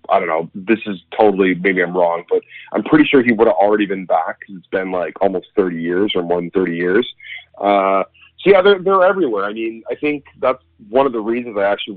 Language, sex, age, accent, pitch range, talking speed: English, male, 30-49, American, 90-120 Hz, 240 wpm